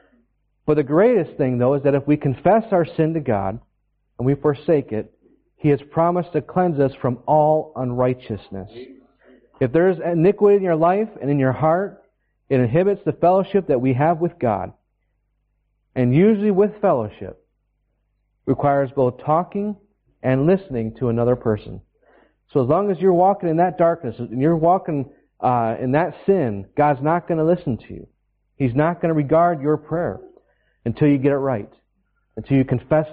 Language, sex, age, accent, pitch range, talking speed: English, male, 40-59, American, 125-165 Hz, 175 wpm